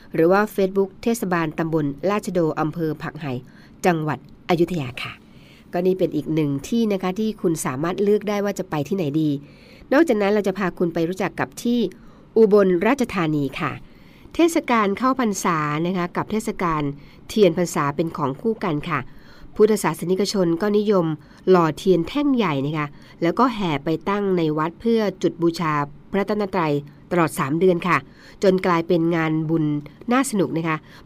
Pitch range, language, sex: 155-200 Hz, Thai, female